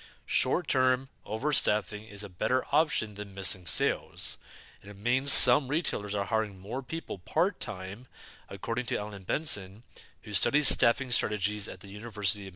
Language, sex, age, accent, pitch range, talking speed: English, male, 30-49, American, 100-130 Hz, 150 wpm